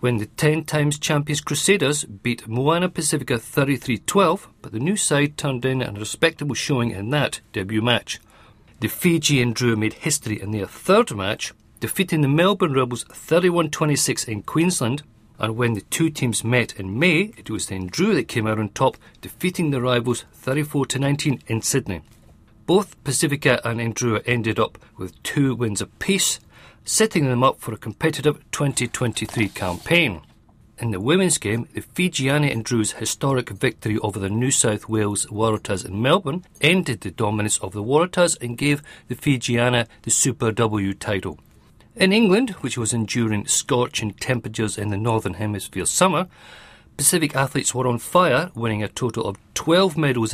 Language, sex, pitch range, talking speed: English, male, 110-145 Hz, 160 wpm